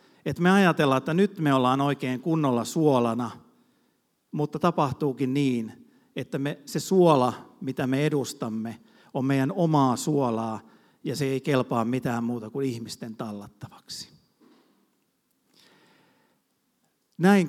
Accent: native